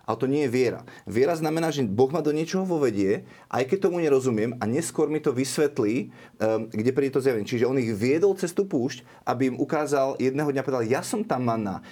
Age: 30-49